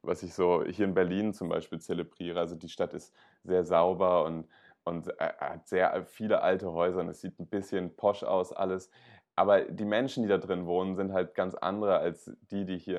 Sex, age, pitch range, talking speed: male, 20-39, 90-105 Hz, 210 wpm